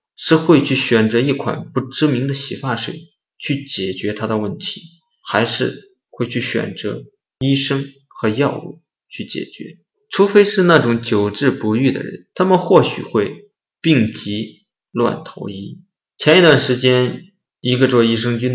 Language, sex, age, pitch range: Chinese, male, 20-39, 115-165 Hz